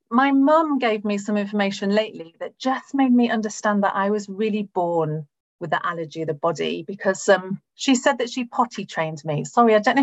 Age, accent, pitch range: 40-59, British, 170-225 Hz